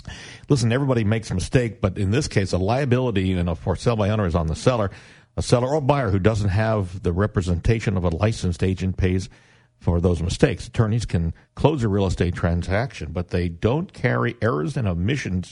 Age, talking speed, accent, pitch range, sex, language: 50-69, 215 wpm, American, 95-120 Hz, male, English